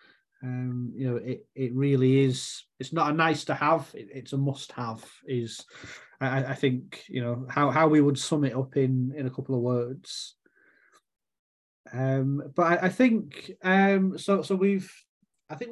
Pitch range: 135-165 Hz